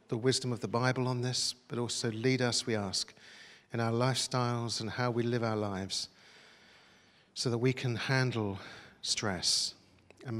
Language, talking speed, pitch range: English, 165 wpm, 115-155 Hz